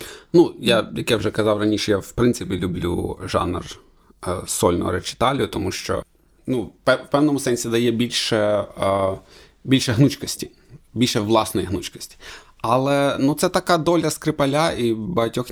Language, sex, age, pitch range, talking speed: Ukrainian, male, 20-39, 105-130 Hz, 145 wpm